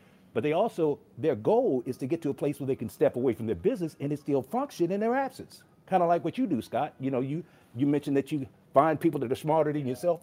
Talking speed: 275 wpm